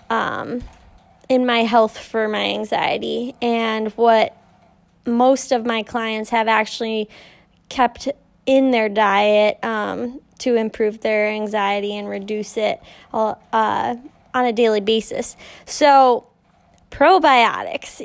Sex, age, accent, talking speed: female, 10-29, American, 115 wpm